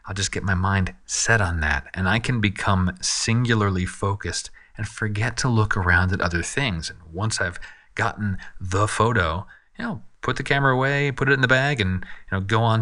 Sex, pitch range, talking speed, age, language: male, 100-140 Hz, 205 wpm, 40-59, English